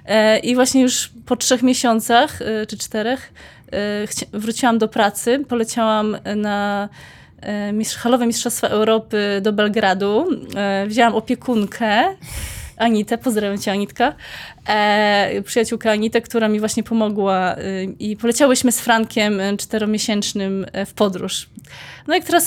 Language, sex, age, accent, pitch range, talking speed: Polish, female, 20-39, native, 210-255 Hz, 105 wpm